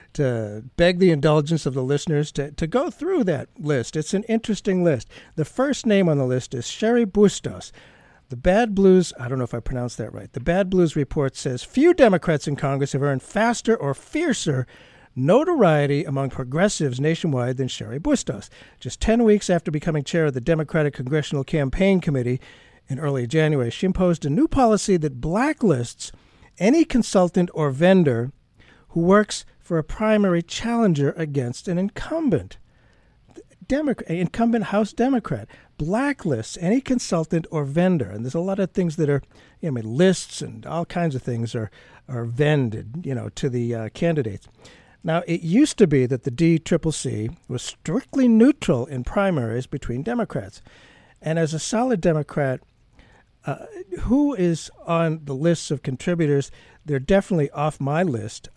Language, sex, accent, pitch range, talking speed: English, male, American, 135-195 Hz, 165 wpm